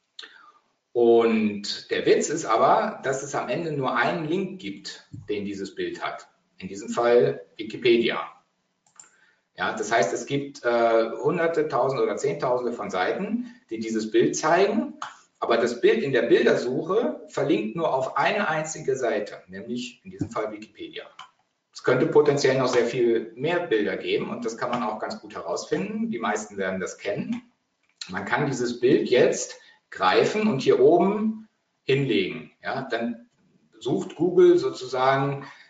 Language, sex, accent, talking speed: German, male, German, 150 wpm